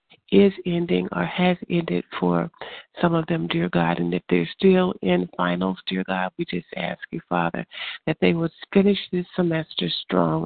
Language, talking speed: English, 180 wpm